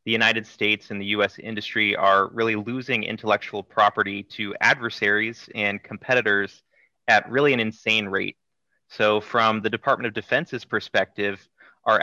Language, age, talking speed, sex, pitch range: English, 30-49, 145 wpm, male, 105-125 Hz